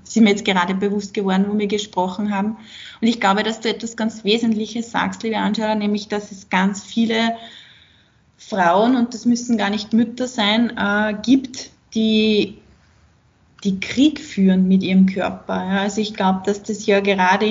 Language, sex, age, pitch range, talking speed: German, female, 20-39, 195-220 Hz, 170 wpm